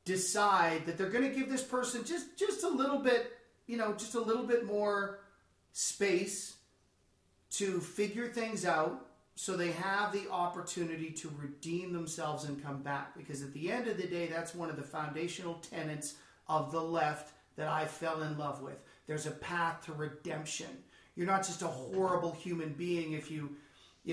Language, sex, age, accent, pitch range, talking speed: English, male, 40-59, American, 150-195 Hz, 180 wpm